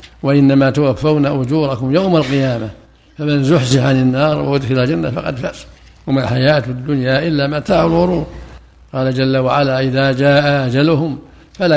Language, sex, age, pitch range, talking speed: Arabic, male, 60-79, 130-155 Hz, 135 wpm